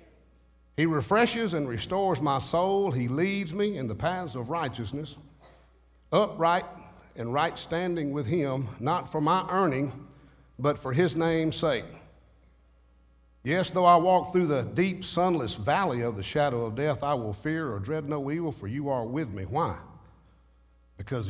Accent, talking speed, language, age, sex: American, 160 wpm, English, 60-79, male